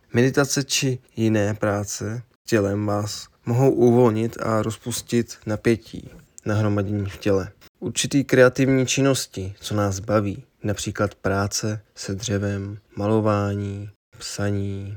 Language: Czech